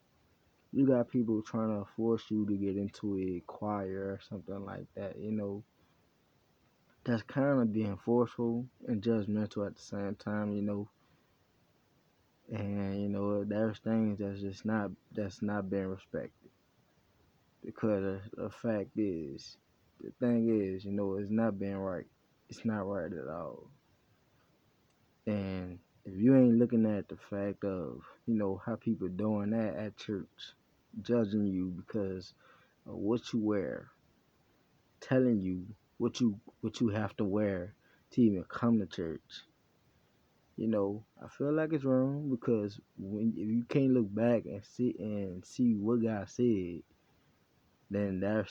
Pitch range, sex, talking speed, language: 100-115 Hz, male, 150 wpm, English